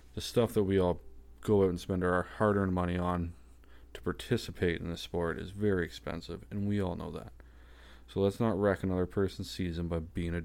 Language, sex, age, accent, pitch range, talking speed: English, male, 20-39, American, 70-105 Hz, 205 wpm